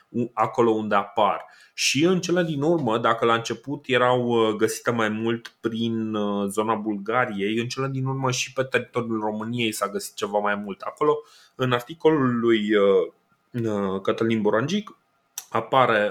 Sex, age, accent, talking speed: male, 20-39, native, 140 wpm